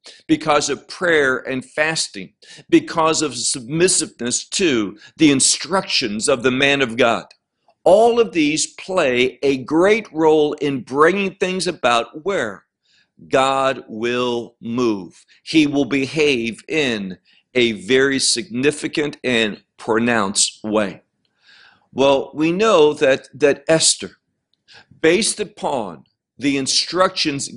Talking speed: 110 wpm